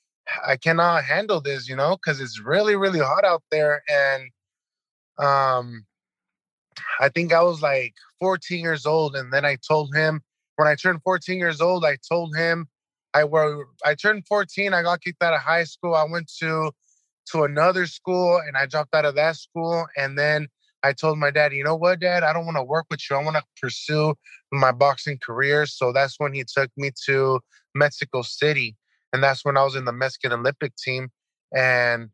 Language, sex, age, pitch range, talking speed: English, male, 20-39, 135-160 Hz, 200 wpm